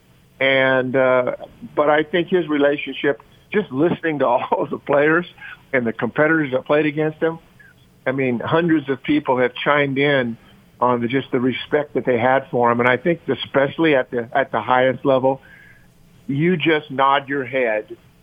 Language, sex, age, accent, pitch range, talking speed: English, male, 50-69, American, 125-150 Hz, 175 wpm